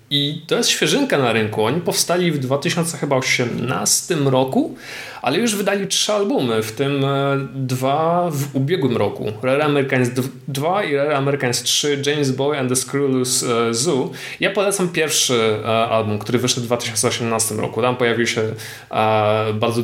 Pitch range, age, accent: 120-140 Hz, 20-39, native